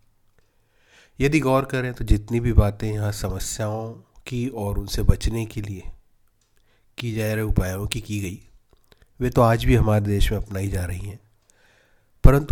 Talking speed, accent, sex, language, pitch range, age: 165 wpm, native, male, Hindi, 100-115 Hz, 40-59